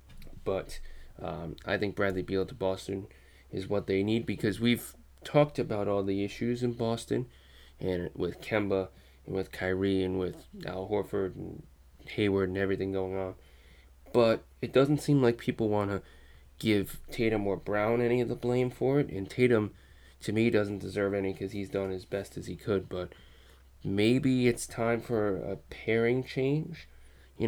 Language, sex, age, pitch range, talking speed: English, male, 20-39, 95-115 Hz, 175 wpm